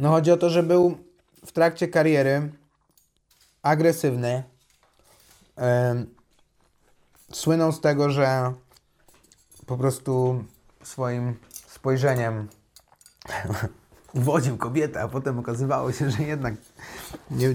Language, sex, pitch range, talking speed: Polish, male, 115-140 Hz, 90 wpm